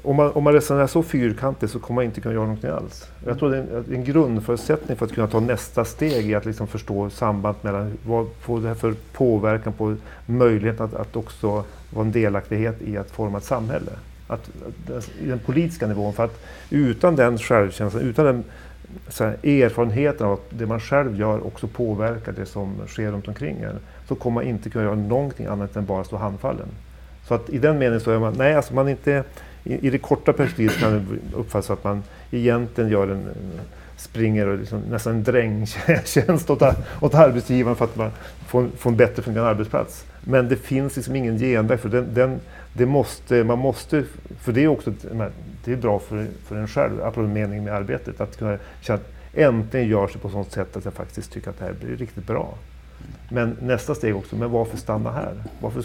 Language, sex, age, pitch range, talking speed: English, male, 40-59, 105-125 Hz, 205 wpm